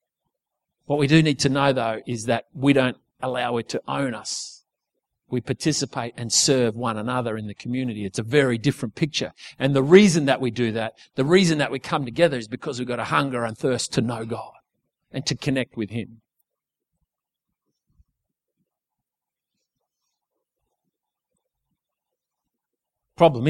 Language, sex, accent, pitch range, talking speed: English, male, Australian, 125-145 Hz, 155 wpm